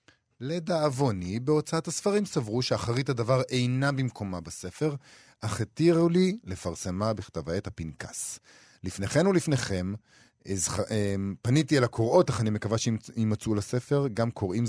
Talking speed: 120 wpm